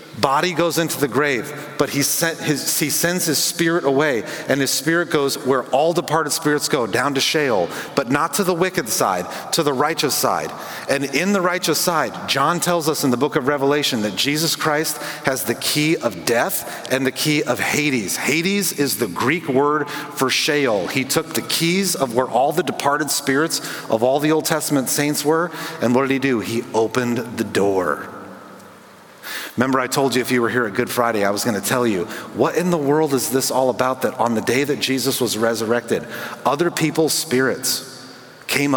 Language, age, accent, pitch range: English, 40-59, American, 125-160 Hz